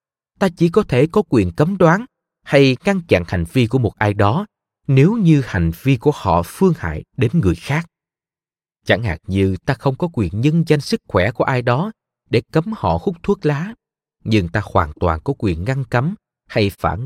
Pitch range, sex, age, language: 95-155 Hz, male, 20-39, Vietnamese